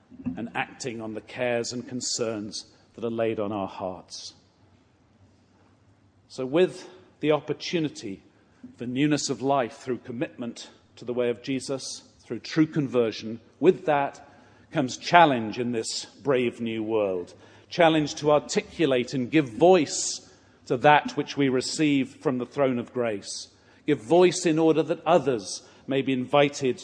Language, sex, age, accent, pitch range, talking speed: English, male, 50-69, British, 120-150 Hz, 145 wpm